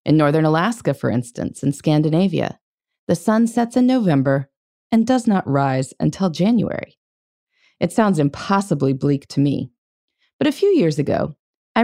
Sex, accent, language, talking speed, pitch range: female, American, English, 150 wpm, 145-230 Hz